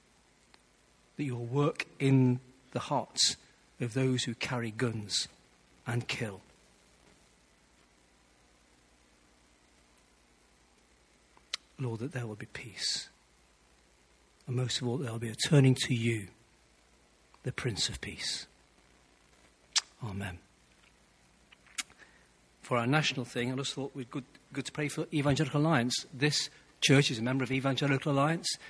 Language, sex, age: English, male, 40-59